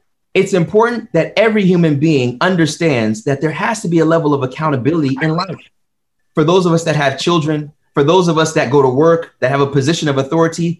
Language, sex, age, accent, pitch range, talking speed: English, male, 30-49, American, 125-165 Hz, 215 wpm